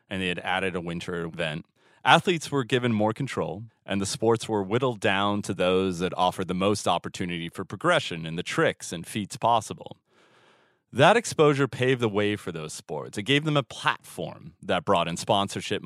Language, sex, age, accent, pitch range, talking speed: English, male, 30-49, American, 90-130 Hz, 190 wpm